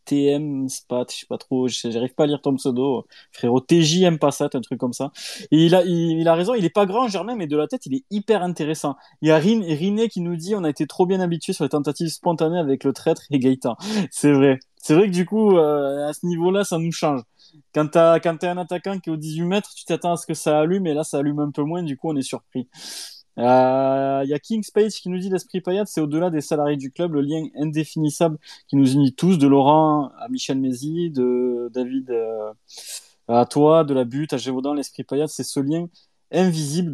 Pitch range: 140-180 Hz